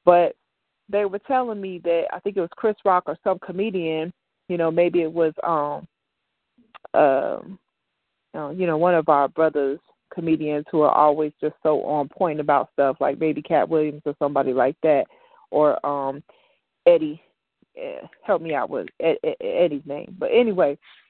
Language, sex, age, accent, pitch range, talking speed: English, female, 30-49, American, 165-220 Hz, 165 wpm